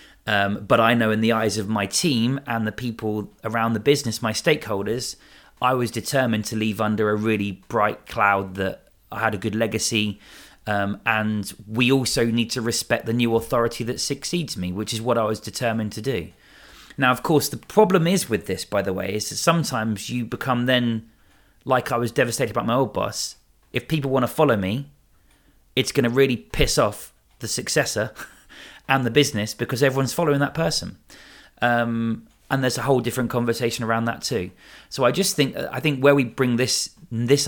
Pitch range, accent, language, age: 105-125 Hz, British, English, 30-49